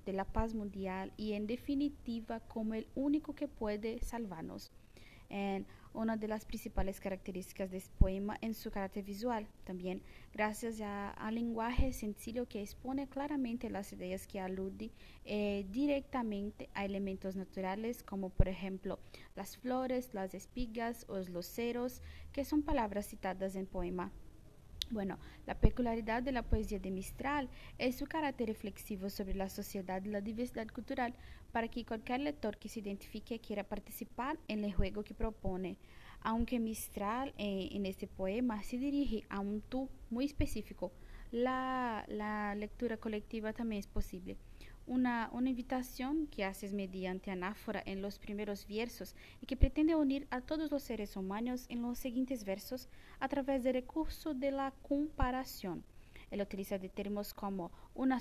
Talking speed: 155 wpm